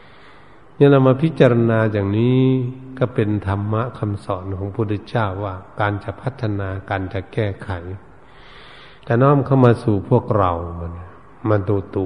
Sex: male